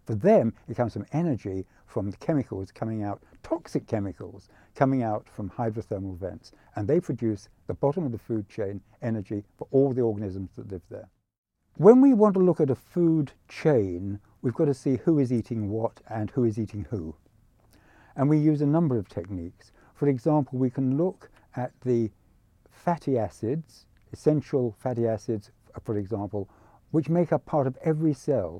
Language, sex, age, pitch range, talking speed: English, male, 60-79, 105-150 Hz, 175 wpm